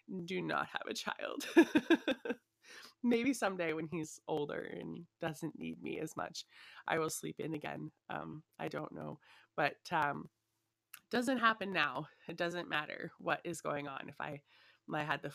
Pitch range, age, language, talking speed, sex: 145-185 Hz, 20-39, English, 170 wpm, female